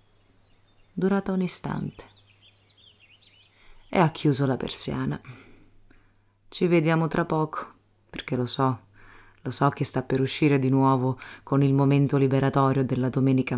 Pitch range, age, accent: 105-165 Hz, 30-49, native